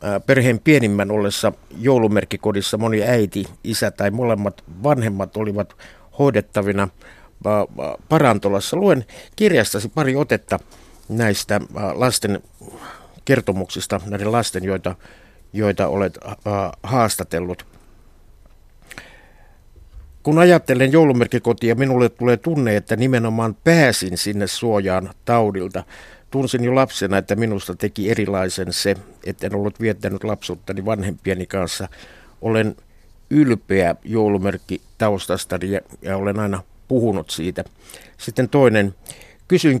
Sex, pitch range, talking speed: male, 100-125 Hz, 100 wpm